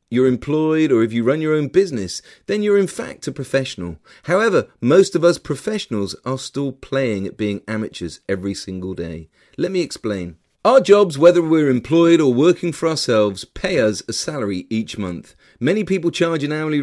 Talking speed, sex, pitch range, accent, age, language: 185 wpm, male, 105-155 Hz, British, 40-59, English